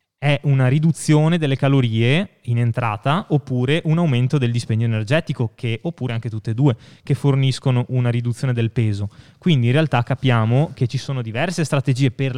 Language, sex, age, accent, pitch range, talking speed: Italian, male, 20-39, native, 115-145 Hz, 170 wpm